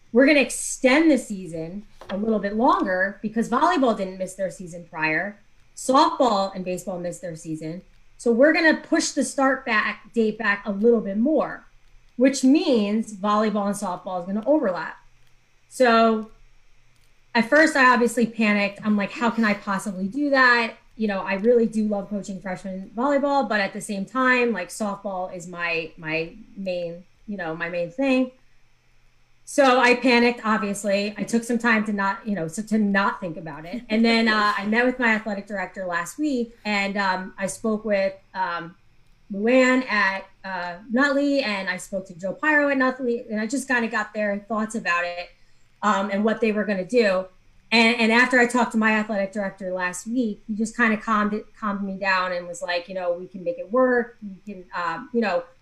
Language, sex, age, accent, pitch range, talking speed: English, female, 20-39, American, 190-240 Hz, 195 wpm